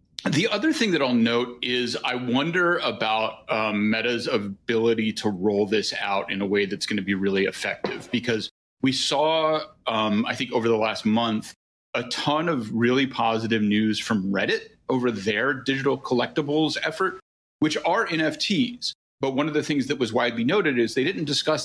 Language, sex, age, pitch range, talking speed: English, male, 30-49, 110-145 Hz, 180 wpm